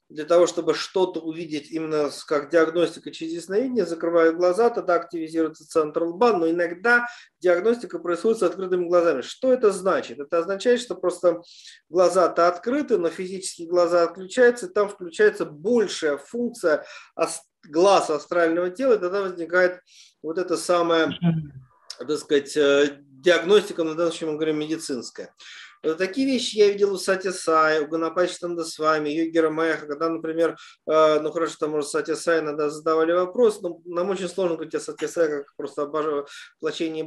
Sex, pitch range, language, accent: male, 155-185 Hz, Russian, native